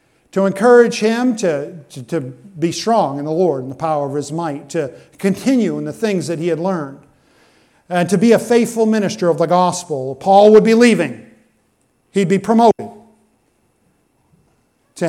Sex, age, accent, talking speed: male, 50-69, American, 170 wpm